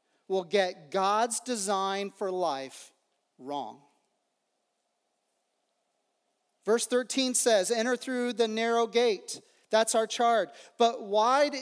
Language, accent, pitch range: English, American, 205-250 Hz